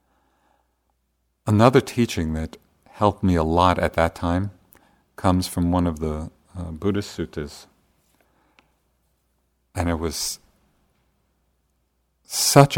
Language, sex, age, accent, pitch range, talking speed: English, male, 50-69, American, 70-95 Hz, 105 wpm